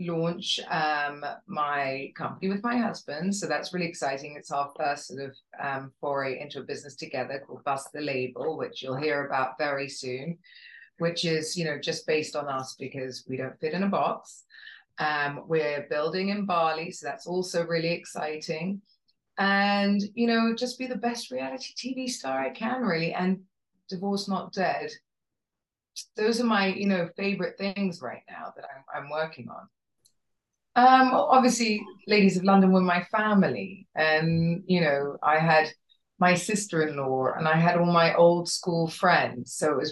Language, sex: English, female